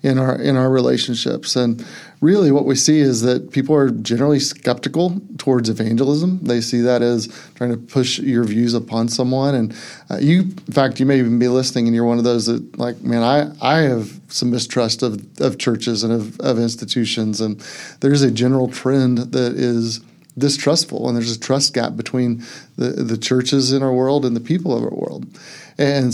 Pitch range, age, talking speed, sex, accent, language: 120-145 Hz, 30-49, 195 wpm, male, American, English